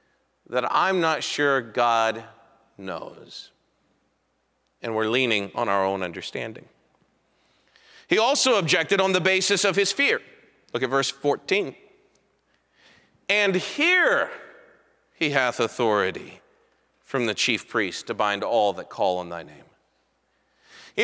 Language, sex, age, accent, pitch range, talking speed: English, male, 40-59, American, 160-230 Hz, 125 wpm